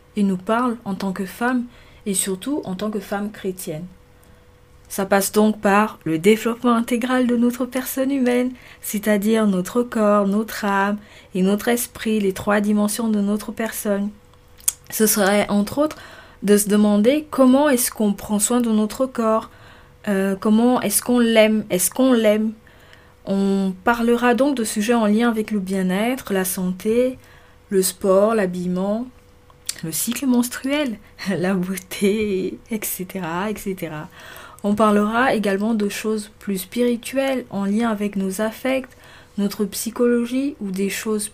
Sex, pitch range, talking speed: female, 195-245 Hz, 145 wpm